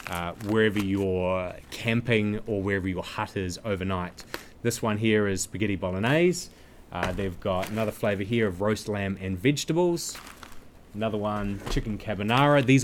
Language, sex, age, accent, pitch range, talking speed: English, male, 20-39, Australian, 100-130 Hz, 150 wpm